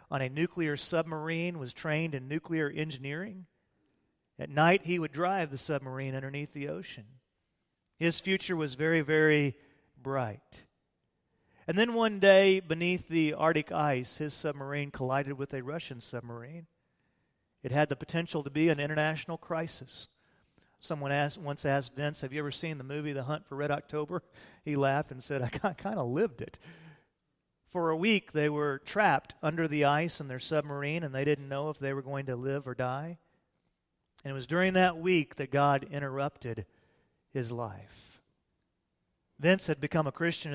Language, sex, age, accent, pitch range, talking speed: English, male, 40-59, American, 135-165 Hz, 165 wpm